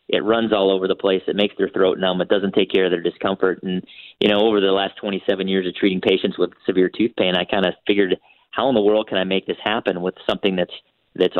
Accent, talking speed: American, 265 wpm